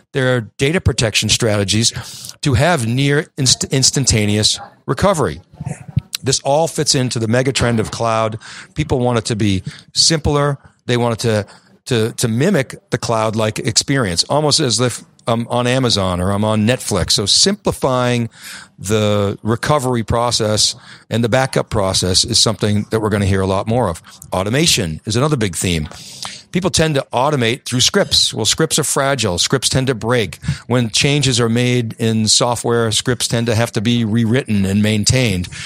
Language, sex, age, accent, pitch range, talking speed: English, male, 40-59, American, 110-135 Hz, 165 wpm